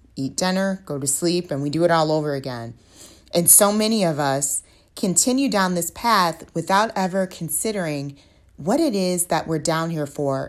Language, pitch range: English, 145-195 Hz